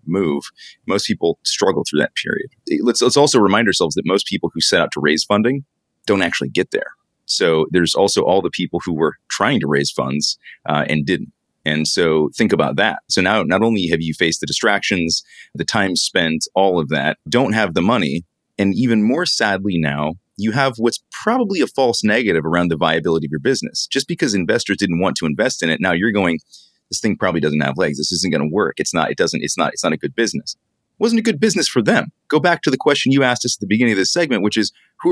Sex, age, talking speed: male, 30-49, 240 wpm